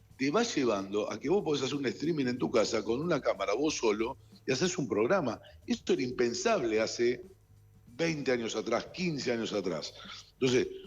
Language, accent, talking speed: Spanish, Argentinian, 180 wpm